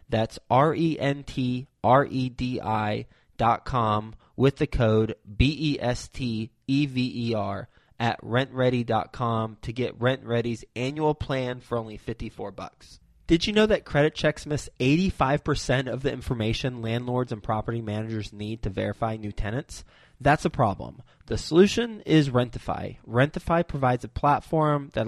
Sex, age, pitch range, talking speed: male, 20-39, 115-150 Hz, 115 wpm